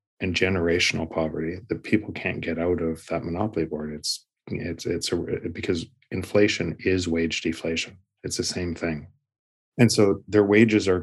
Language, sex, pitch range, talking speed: English, male, 80-105 Hz, 160 wpm